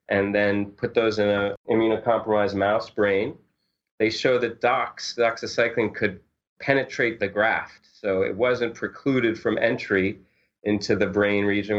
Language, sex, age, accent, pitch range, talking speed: English, male, 30-49, American, 95-120 Hz, 145 wpm